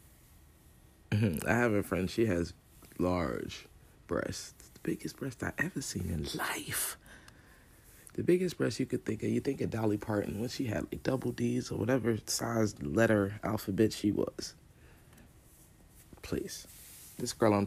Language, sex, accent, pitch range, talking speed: English, male, American, 90-115 Hz, 155 wpm